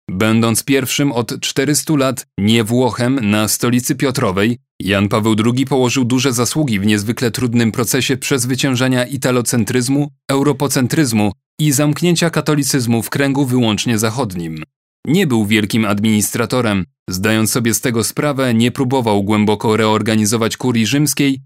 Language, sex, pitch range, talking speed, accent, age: Polish, male, 115-140 Hz, 125 wpm, native, 30-49